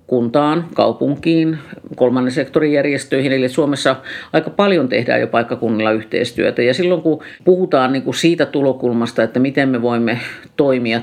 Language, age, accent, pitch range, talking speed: Finnish, 50-69, native, 120-145 Hz, 130 wpm